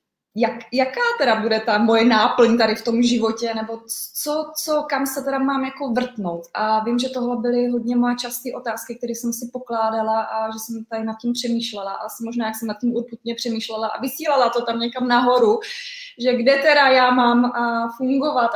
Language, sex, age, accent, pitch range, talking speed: Czech, female, 20-39, native, 210-245 Hz, 195 wpm